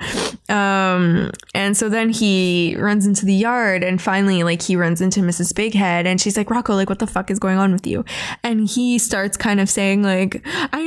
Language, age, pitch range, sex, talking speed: English, 20-39, 190-265 Hz, female, 210 wpm